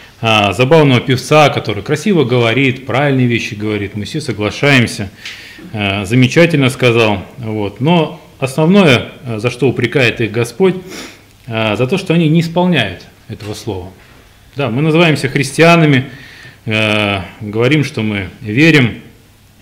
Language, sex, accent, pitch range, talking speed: Russian, male, native, 105-140 Hz, 110 wpm